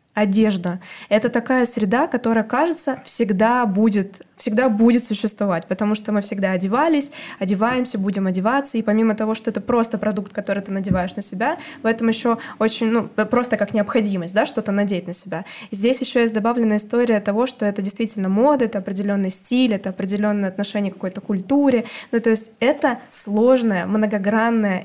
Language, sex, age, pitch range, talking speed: Russian, female, 20-39, 205-240 Hz, 170 wpm